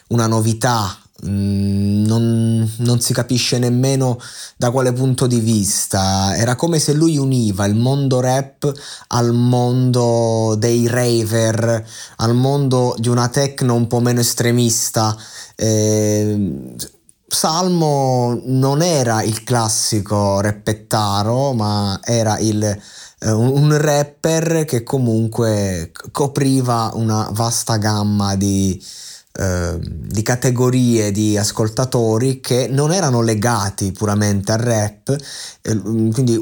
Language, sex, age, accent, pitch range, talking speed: Italian, male, 20-39, native, 100-125 Hz, 105 wpm